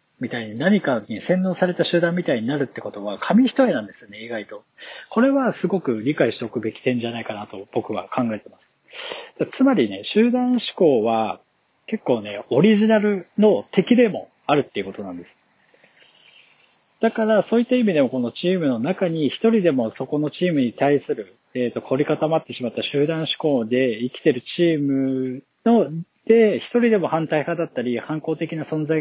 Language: Japanese